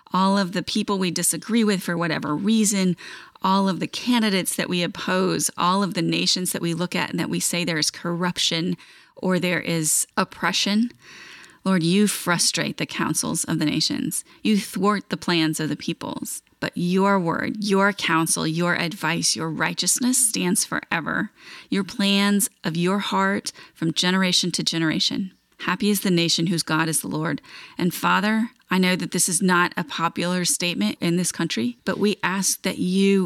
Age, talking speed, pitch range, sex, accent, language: 30-49, 180 wpm, 170-200 Hz, female, American, English